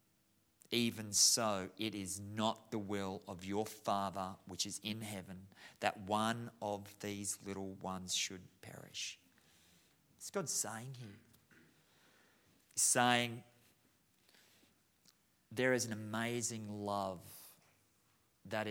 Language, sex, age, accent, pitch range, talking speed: English, male, 30-49, Australian, 100-110 Hz, 110 wpm